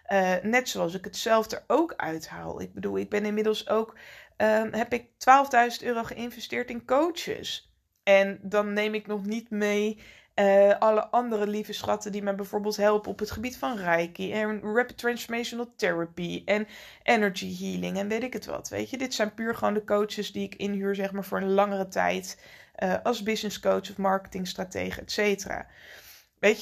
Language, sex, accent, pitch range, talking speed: Dutch, female, Dutch, 190-235 Hz, 185 wpm